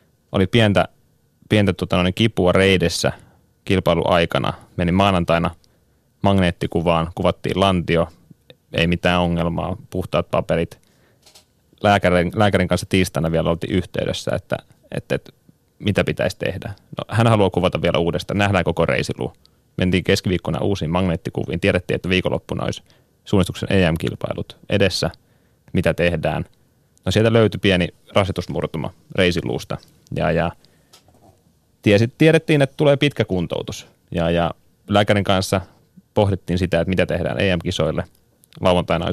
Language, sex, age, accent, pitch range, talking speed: Finnish, male, 30-49, native, 85-100 Hz, 115 wpm